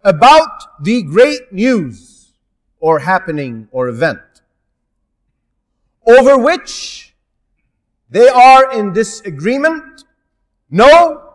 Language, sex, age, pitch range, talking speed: English, male, 40-59, 170-285 Hz, 80 wpm